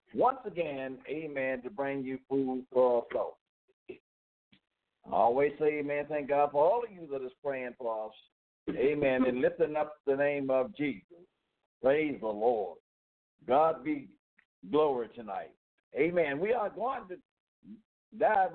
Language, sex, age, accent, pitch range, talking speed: English, male, 60-79, American, 125-155 Hz, 150 wpm